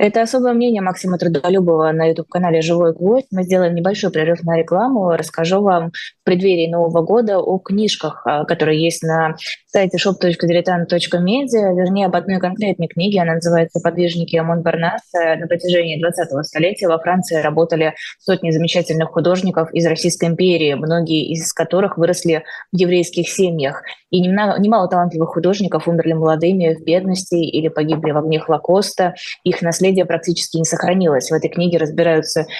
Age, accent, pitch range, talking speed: 20-39, native, 160-180 Hz, 150 wpm